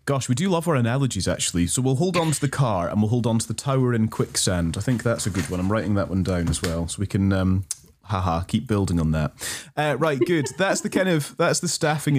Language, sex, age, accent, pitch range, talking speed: English, male, 30-49, British, 105-140 Hz, 270 wpm